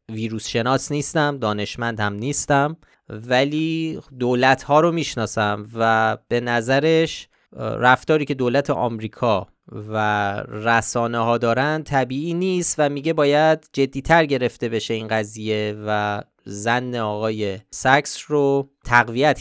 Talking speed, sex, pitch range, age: 115 wpm, male, 105-140 Hz, 20-39